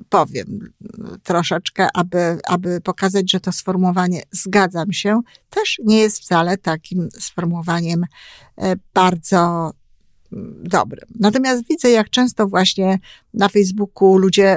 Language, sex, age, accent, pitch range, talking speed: Polish, female, 50-69, native, 175-220 Hz, 105 wpm